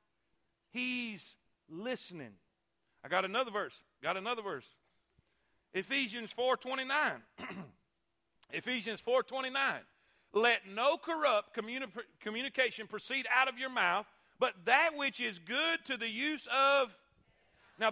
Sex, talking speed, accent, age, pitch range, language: male, 125 wpm, American, 40-59, 230-300 Hz, English